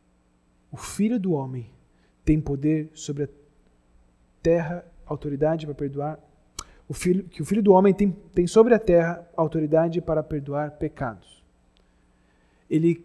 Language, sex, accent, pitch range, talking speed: Portuguese, male, Brazilian, 140-200 Hz, 135 wpm